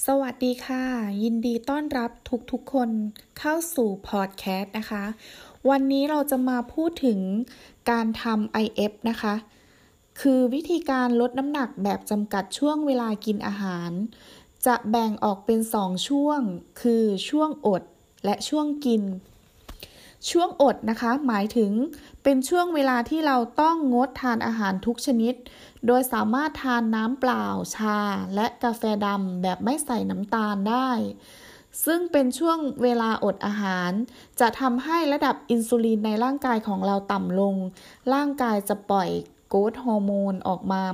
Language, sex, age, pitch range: Thai, female, 20-39, 205-260 Hz